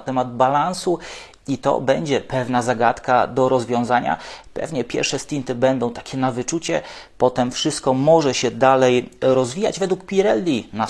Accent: Polish